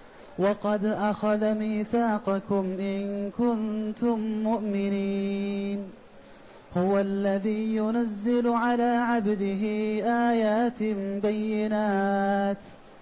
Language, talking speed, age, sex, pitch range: Arabic, 60 wpm, 30-49, male, 200-235 Hz